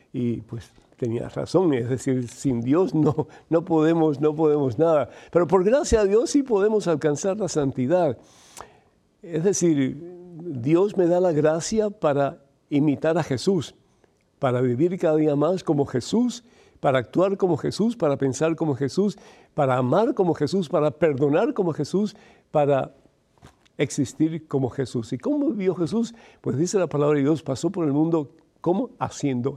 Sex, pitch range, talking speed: male, 135-175 Hz, 160 wpm